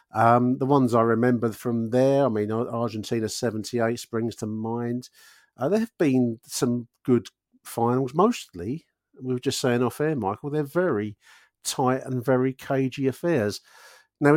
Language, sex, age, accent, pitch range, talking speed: English, male, 50-69, British, 115-145 Hz, 155 wpm